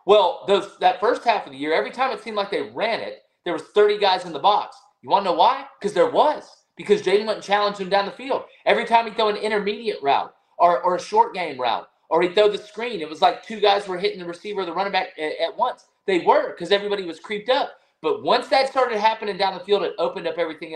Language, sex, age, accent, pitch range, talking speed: English, male, 30-49, American, 175-285 Hz, 265 wpm